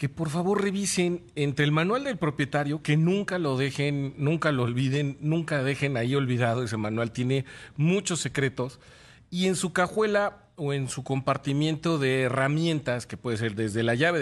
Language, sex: Spanish, male